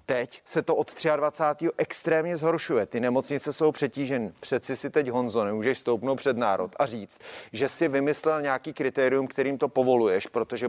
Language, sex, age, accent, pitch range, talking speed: Czech, male, 30-49, native, 120-140 Hz, 170 wpm